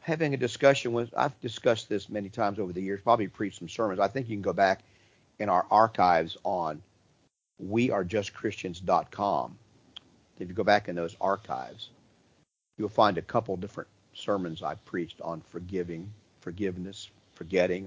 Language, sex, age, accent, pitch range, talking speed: English, male, 50-69, American, 95-120 Hz, 155 wpm